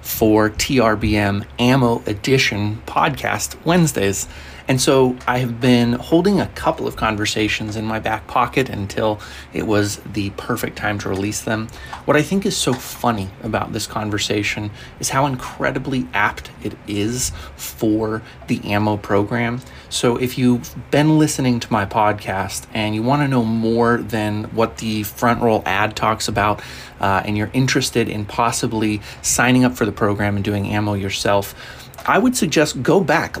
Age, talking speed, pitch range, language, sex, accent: 30-49, 160 wpm, 105-125 Hz, English, male, American